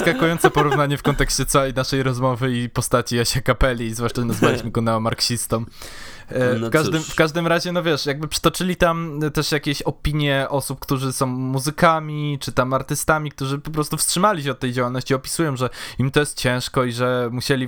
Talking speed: 170 wpm